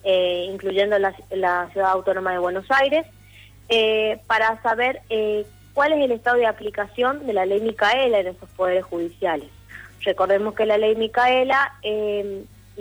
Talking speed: 155 wpm